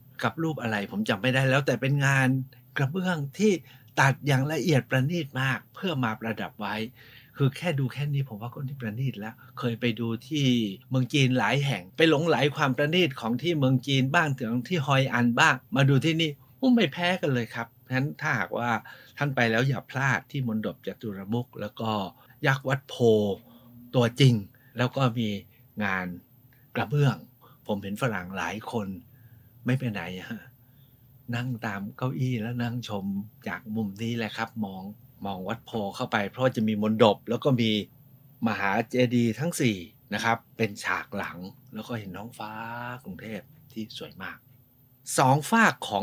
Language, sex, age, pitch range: Thai, male, 60-79, 110-135 Hz